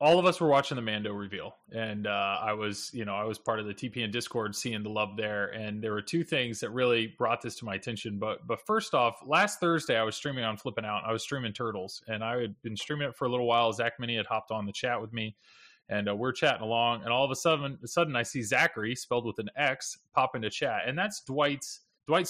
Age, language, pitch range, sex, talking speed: 30-49, English, 105-135 Hz, male, 265 wpm